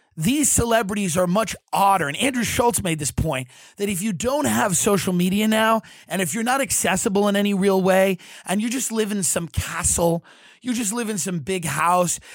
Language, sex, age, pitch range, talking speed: English, male, 30-49, 170-225 Hz, 205 wpm